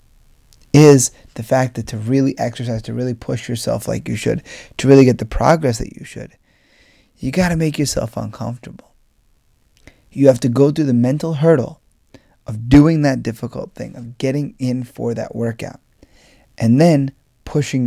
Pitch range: 120-145 Hz